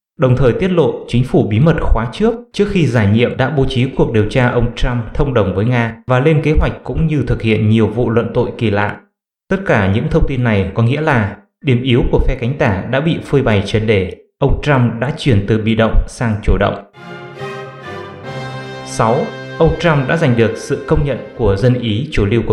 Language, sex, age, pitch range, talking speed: English, male, 20-39, 115-155 Hz, 240 wpm